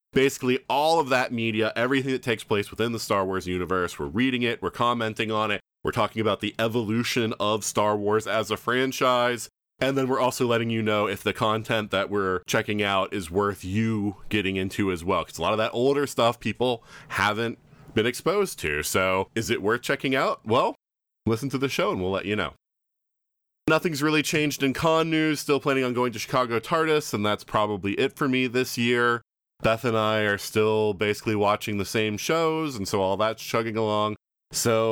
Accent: American